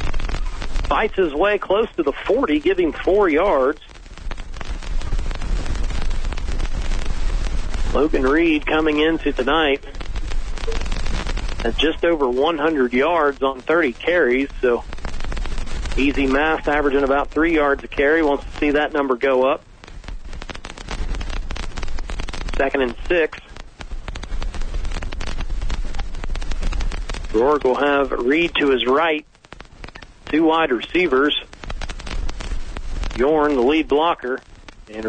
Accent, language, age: American, English, 40-59